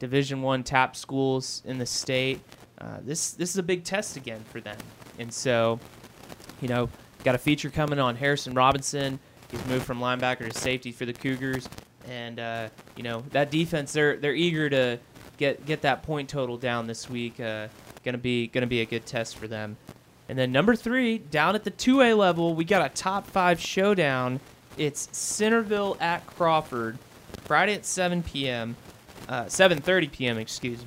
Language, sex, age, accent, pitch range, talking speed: English, male, 30-49, American, 125-150 Hz, 180 wpm